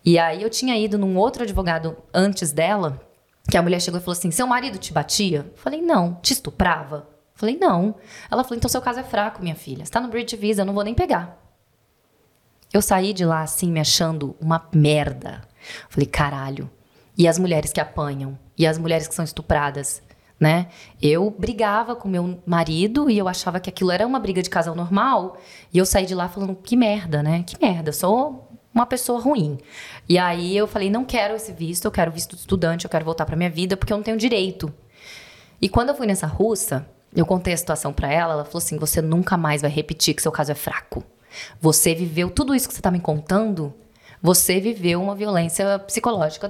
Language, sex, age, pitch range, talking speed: Portuguese, female, 20-39, 165-220 Hz, 215 wpm